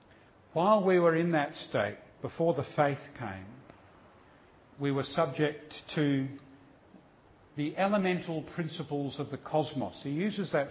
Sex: male